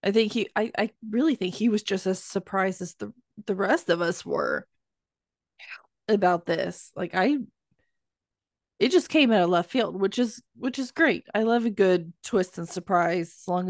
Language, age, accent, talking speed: English, 20-39, American, 195 wpm